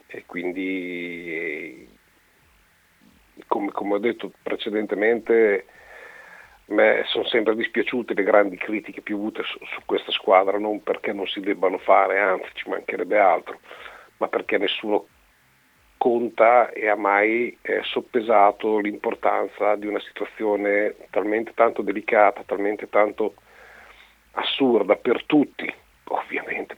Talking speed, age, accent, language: 115 wpm, 50-69, native, Italian